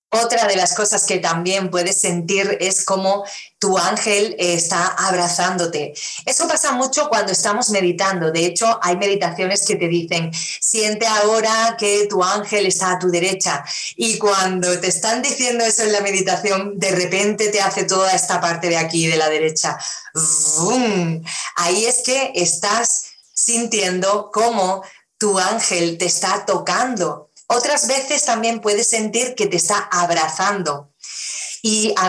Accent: Spanish